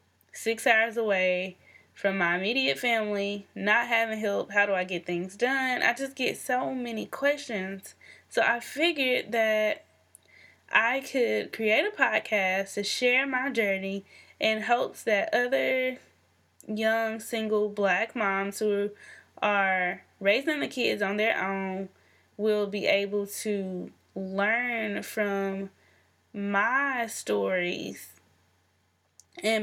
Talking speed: 120 wpm